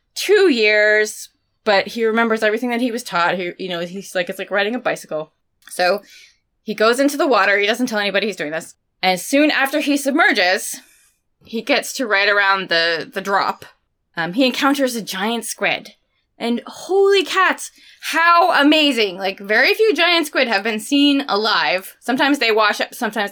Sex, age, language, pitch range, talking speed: female, 20-39, English, 195-275 Hz, 185 wpm